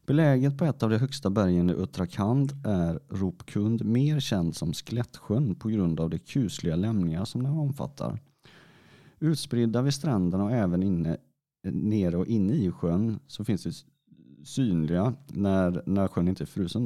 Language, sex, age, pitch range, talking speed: Swedish, male, 30-49, 90-125 Hz, 160 wpm